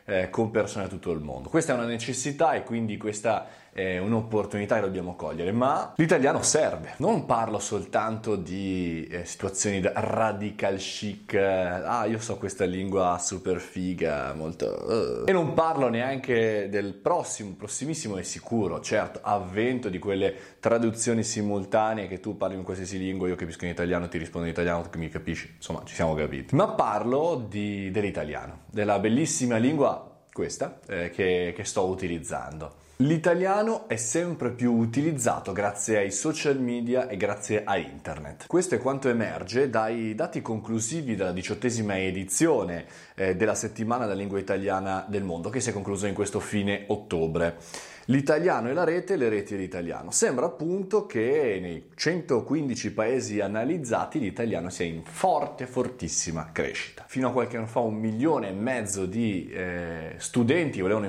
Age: 20-39